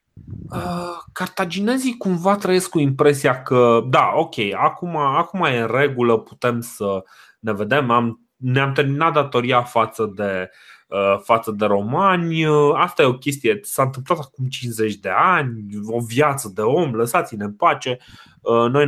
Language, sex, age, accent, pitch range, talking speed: Romanian, male, 20-39, native, 110-145 Hz, 145 wpm